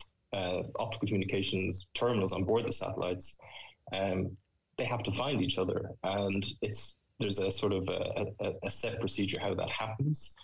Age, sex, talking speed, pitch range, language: 20-39, male, 165 wpm, 95-110 Hz, English